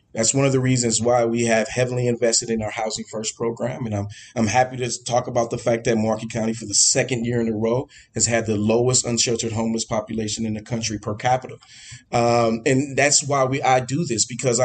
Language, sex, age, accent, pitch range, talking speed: English, male, 30-49, American, 120-145 Hz, 225 wpm